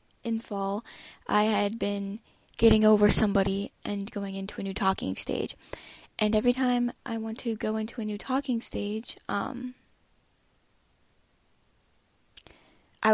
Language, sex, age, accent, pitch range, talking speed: English, female, 10-29, American, 195-220 Hz, 135 wpm